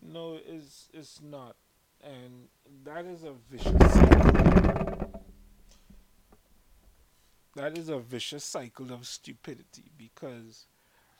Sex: male